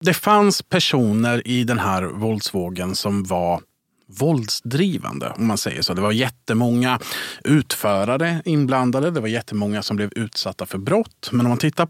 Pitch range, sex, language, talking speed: 105-125 Hz, male, Swedish, 155 wpm